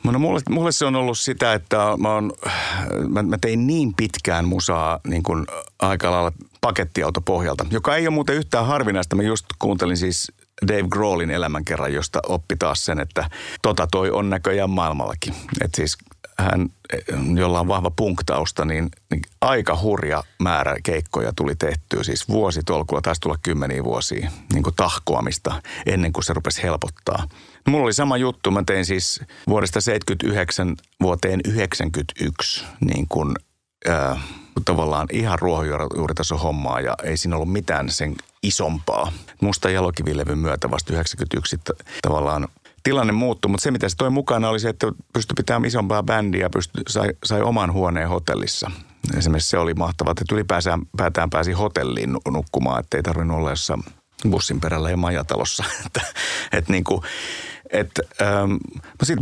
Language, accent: Finnish, native